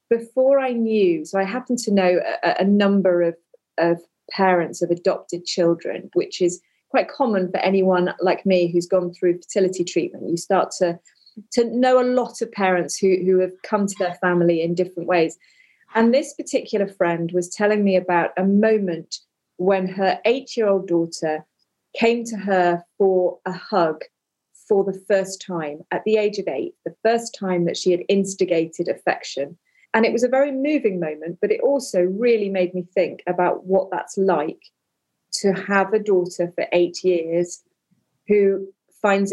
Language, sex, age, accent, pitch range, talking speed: English, female, 30-49, British, 180-220 Hz, 170 wpm